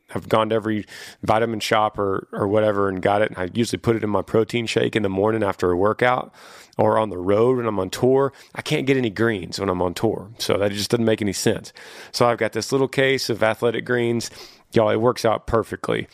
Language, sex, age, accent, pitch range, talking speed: English, male, 30-49, American, 105-125 Hz, 240 wpm